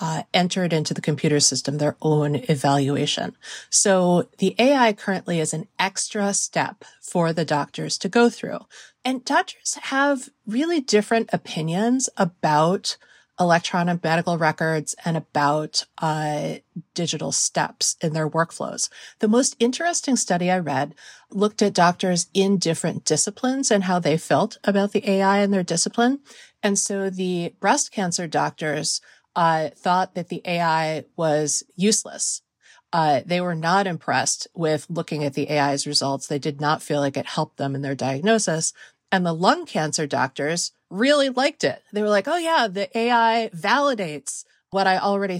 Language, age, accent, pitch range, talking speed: English, 30-49, American, 160-230 Hz, 155 wpm